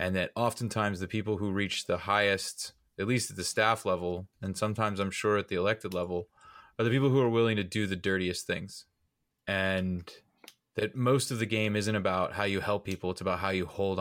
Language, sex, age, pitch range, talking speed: English, male, 20-39, 100-120 Hz, 220 wpm